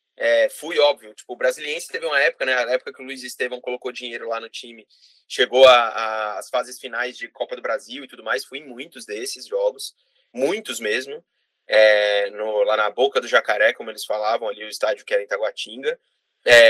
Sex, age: male, 20-39